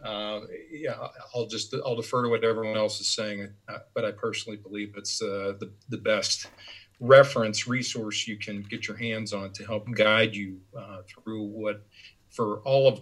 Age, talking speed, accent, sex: 40-59, 180 wpm, American, male